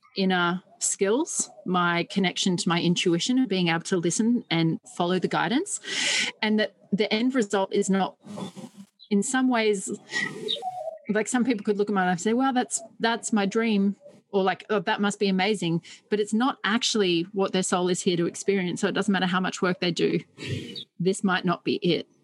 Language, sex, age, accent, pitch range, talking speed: English, female, 40-59, Australian, 180-220 Hz, 195 wpm